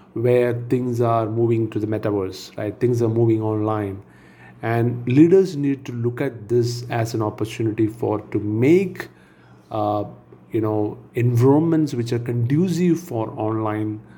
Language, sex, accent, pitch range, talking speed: English, male, Indian, 105-120 Hz, 145 wpm